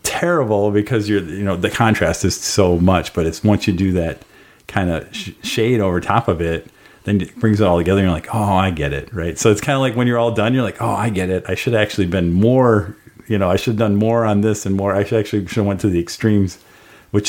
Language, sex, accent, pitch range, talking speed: English, male, American, 85-110 Hz, 270 wpm